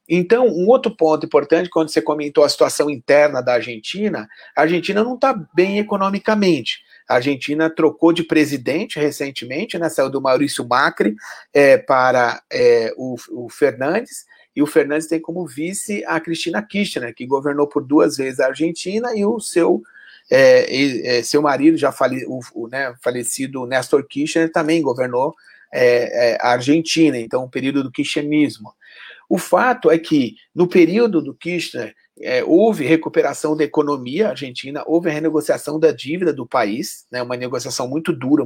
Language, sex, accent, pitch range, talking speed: Portuguese, male, Brazilian, 145-185 Hz, 145 wpm